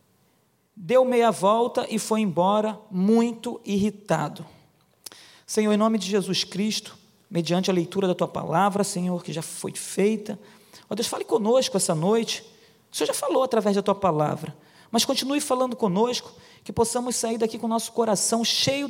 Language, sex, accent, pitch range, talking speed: Portuguese, male, Brazilian, 170-220 Hz, 160 wpm